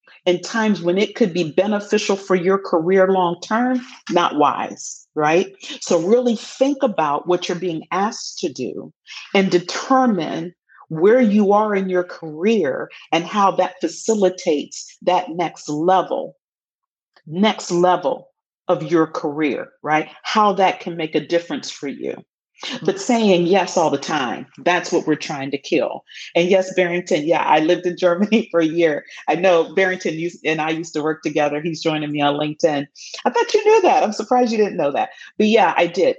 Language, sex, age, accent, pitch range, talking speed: English, female, 40-59, American, 165-205 Hz, 175 wpm